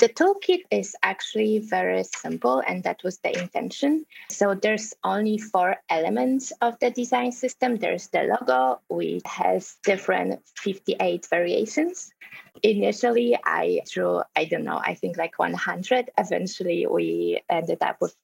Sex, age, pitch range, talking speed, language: female, 20-39, 175-260 Hz, 140 wpm, English